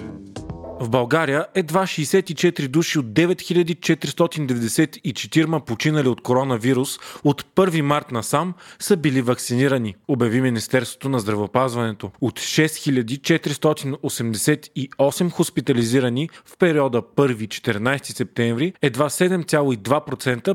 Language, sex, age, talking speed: Bulgarian, male, 30-49, 85 wpm